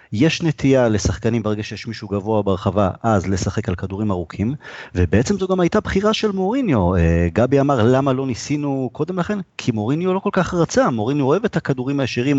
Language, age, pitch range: Hebrew, 30-49, 95-135 Hz